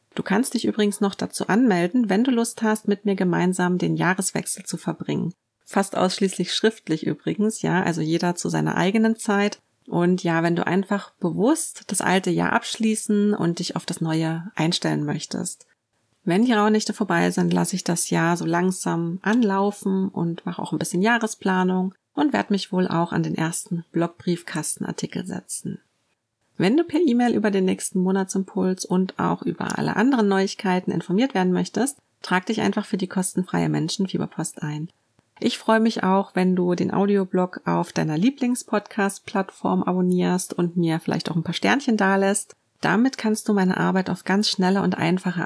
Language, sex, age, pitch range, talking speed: German, female, 30-49, 175-210 Hz, 170 wpm